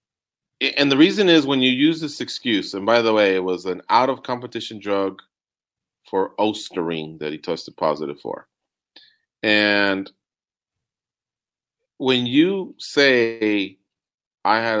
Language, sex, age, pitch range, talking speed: English, male, 30-49, 95-125 Hz, 125 wpm